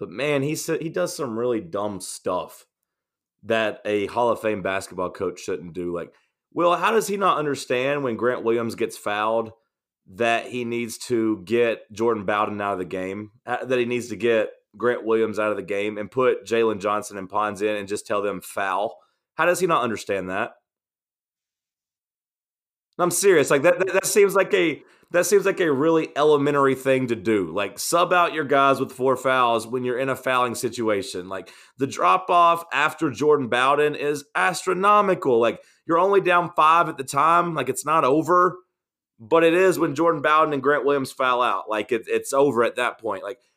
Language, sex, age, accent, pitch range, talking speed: English, male, 30-49, American, 115-175 Hz, 195 wpm